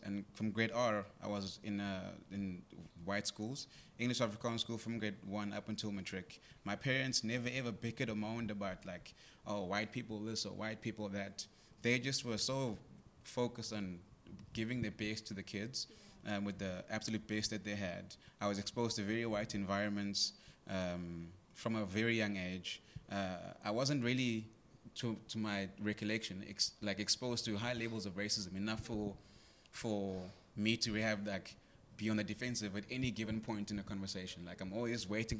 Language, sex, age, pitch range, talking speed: English, male, 20-39, 100-115 Hz, 180 wpm